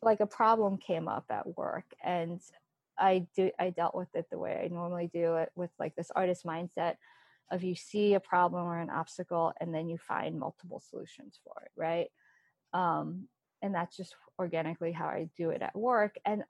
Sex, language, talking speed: female, English, 195 wpm